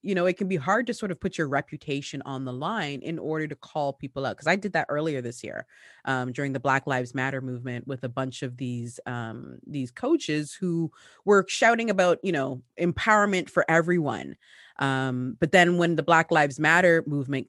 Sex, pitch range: female, 135-195 Hz